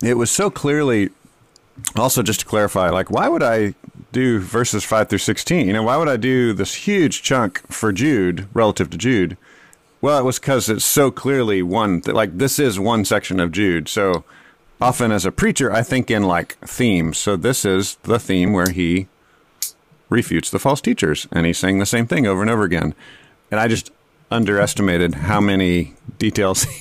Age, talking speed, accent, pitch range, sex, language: 40-59, 190 wpm, American, 90-115 Hz, male, English